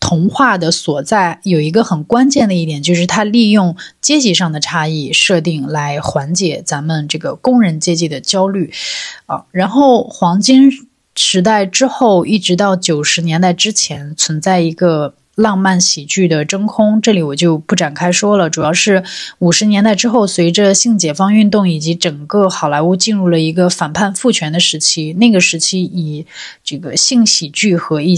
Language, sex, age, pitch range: Chinese, female, 20-39, 160-205 Hz